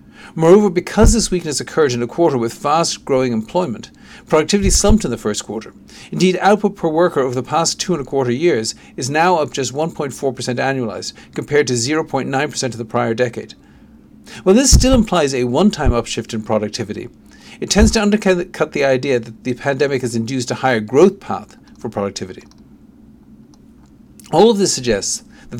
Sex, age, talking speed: male, 50-69, 170 wpm